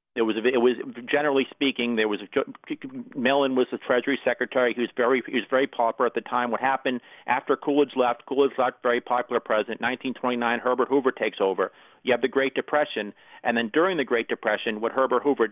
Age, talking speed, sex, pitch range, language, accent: 50-69, 210 wpm, male, 115-135 Hz, English, American